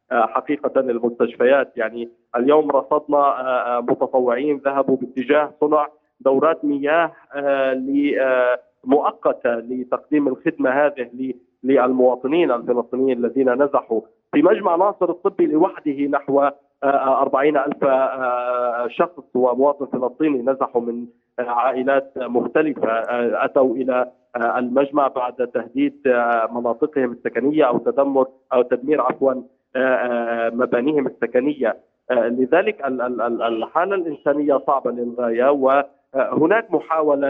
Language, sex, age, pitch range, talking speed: Arabic, male, 40-59, 125-140 Hz, 90 wpm